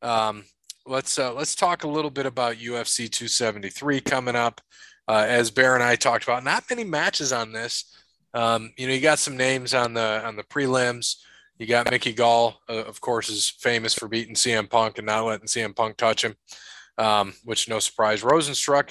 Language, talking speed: English, 195 wpm